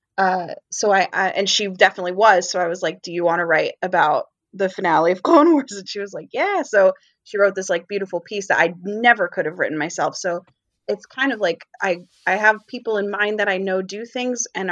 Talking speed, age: 240 wpm, 20-39